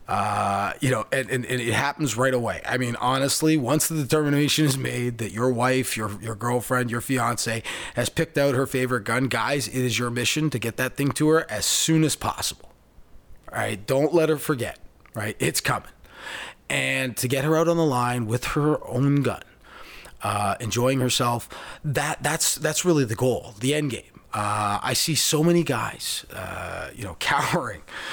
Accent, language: American, English